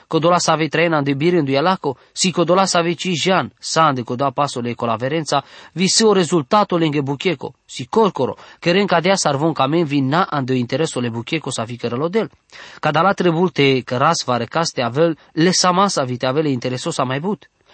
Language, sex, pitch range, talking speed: English, male, 135-180 Hz, 160 wpm